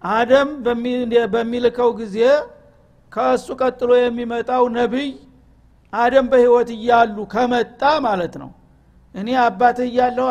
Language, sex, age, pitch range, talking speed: Amharic, male, 60-79, 215-255 Hz, 95 wpm